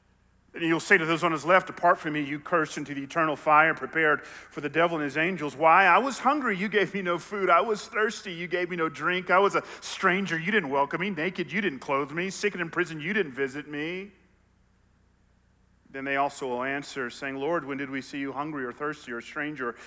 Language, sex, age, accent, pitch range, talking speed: English, male, 40-59, American, 110-160 Hz, 240 wpm